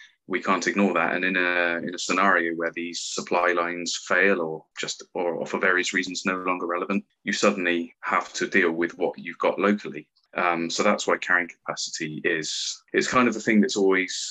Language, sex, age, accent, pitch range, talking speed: English, male, 20-39, British, 85-105 Hz, 200 wpm